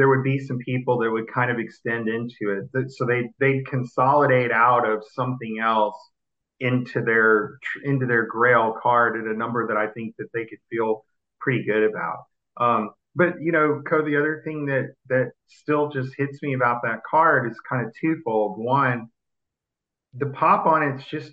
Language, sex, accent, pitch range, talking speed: English, male, American, 115-135 Hz, 185 wpm